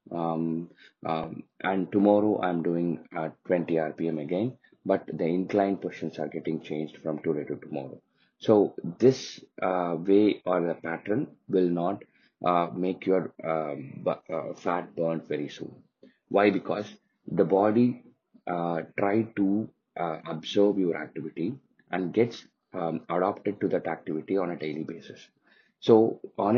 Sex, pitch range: male, 85-100 Hz